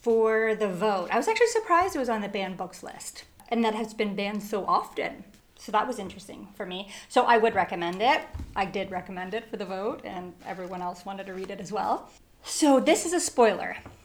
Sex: female